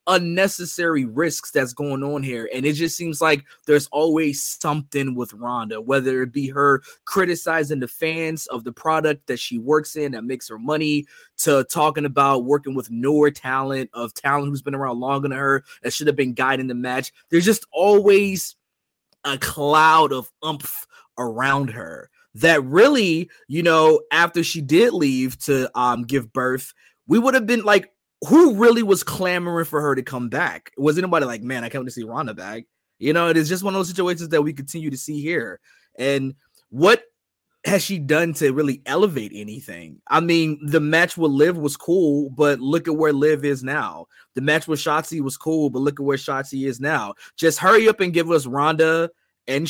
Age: 20-39